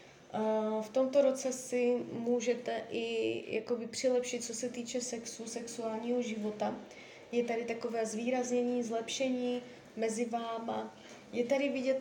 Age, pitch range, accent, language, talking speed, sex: 20-39, 210-245 Hz, native, Czech, 115 wpm, female